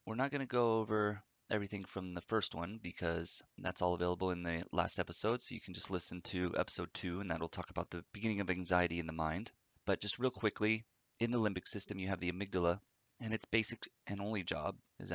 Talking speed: 220 wpm